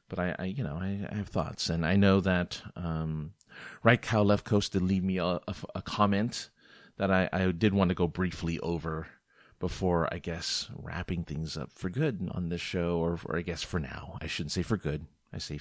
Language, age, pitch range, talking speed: English, 40-59, 80-100 Hz, 225 wpm